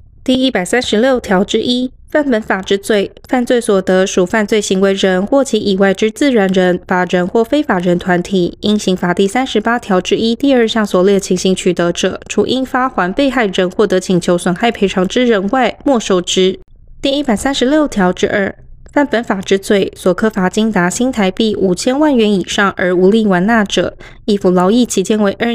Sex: female